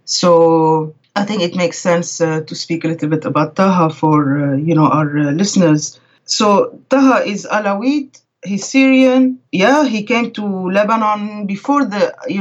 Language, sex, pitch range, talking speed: English, female, 155-205 Hz, 170 wpm